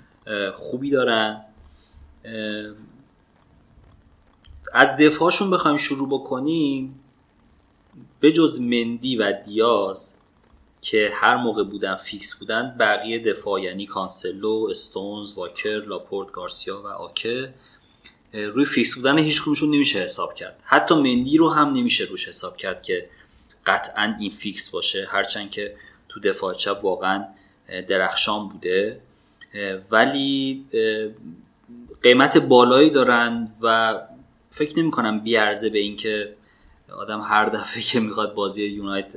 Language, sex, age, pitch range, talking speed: Persian, male, 30-49, 105-150 Hz, 115 wpm